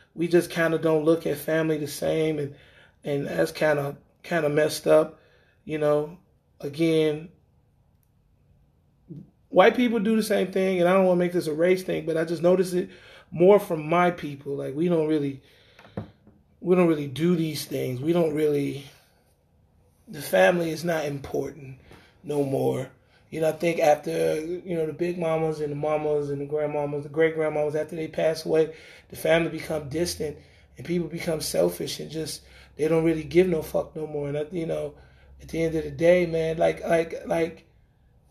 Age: 20-39